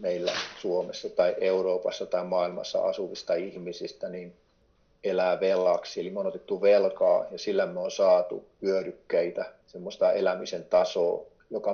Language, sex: Finnish, male